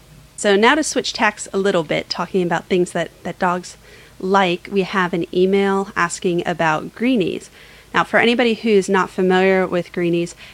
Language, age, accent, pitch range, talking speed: English, 30-49, American, 165-195 Hz, 170 wpm